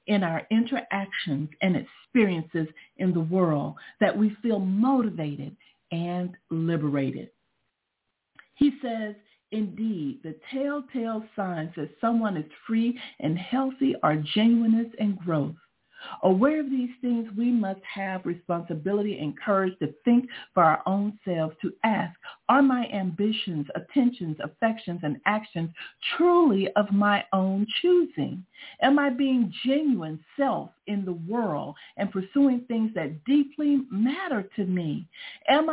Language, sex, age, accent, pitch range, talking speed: English, female, 50-69, American, 180-255 Hz, 130 wpm